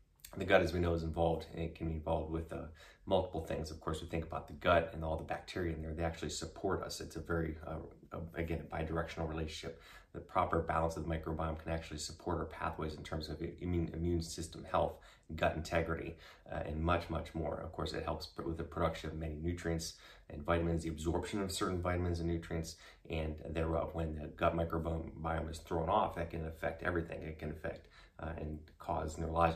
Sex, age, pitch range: male, 30-49, 80-85 Hz